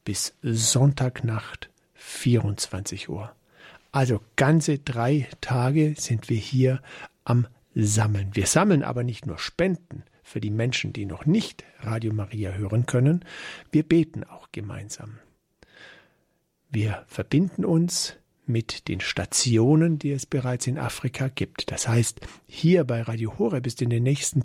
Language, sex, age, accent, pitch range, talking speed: German, male, 50-69, German, 115-150 Hz, 135 wpm